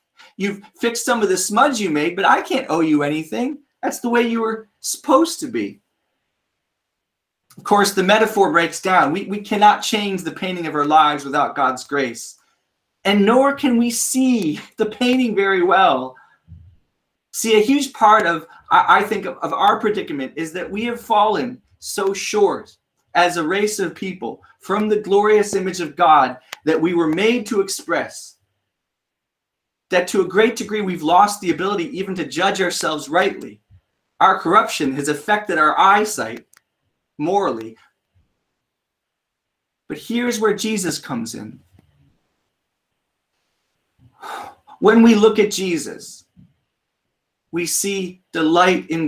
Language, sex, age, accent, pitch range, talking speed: English, male, 30-49, American, 170-225 Hz, 150 wpm